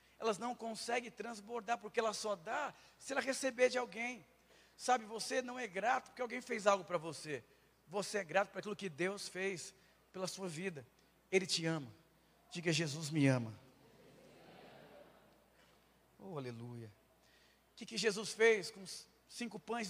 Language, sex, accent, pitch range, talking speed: Portuguese, male, Brazilian, 150-205 Hz, 155 wpm